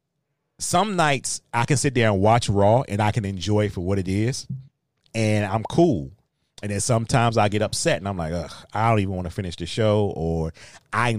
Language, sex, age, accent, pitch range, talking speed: English, male, 30-49, American, 95-130 Hz, 220 wpm